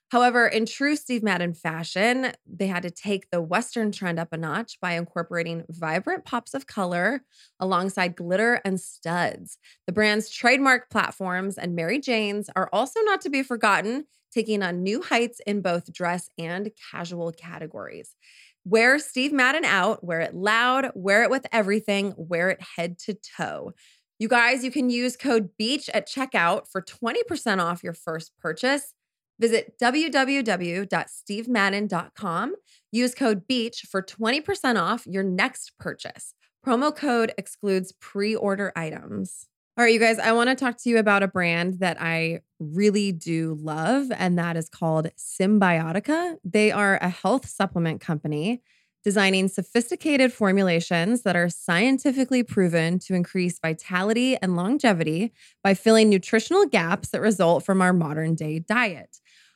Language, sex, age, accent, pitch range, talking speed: English, female, 20-39, American, 175-240 Hz, 150 wpm